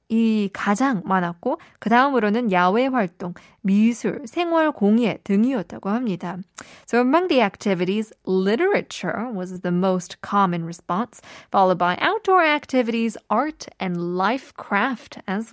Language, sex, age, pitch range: Korean, female, 20-39, 200-285 Hz